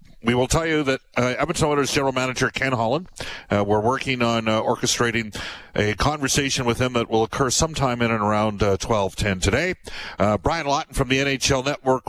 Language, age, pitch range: English, 50-69, 100-130 Hz